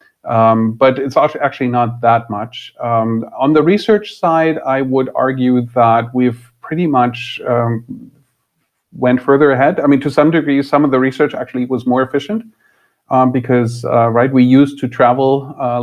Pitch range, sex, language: 115-135 Hz, male, English